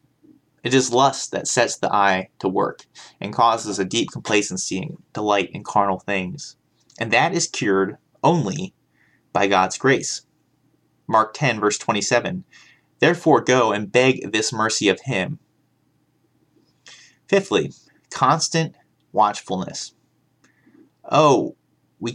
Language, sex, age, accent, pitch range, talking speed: English, male, 20-39, American, 100-150 Hz, 120 wpm